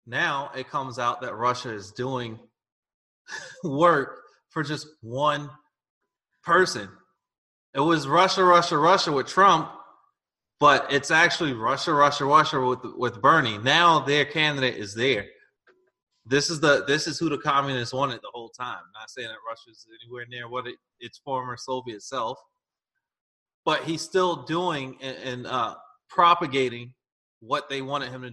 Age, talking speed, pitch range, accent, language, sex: 30-49, 155 wpm, 125-170 Hz, American, English, male